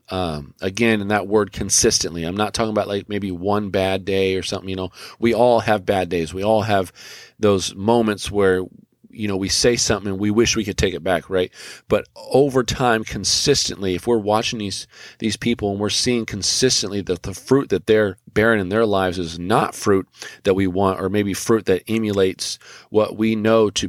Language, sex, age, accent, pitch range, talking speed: English, male, 40-59, American, 95-115 Hz, 205 wpm